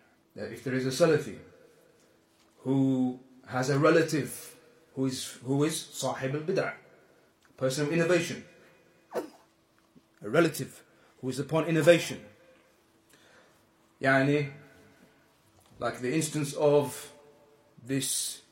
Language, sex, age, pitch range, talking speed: English, male, 30-49, 130-170 Hz, 95 wpm